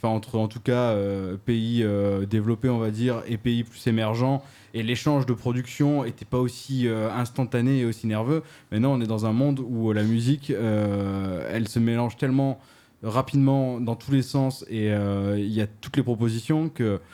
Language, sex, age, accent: French, male, 20-39, French